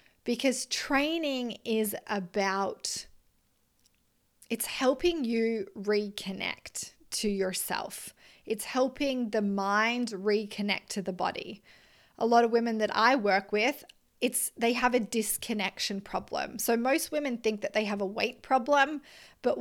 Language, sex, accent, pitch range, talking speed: English, female, Australian, 205-240 Hz, 130 wpm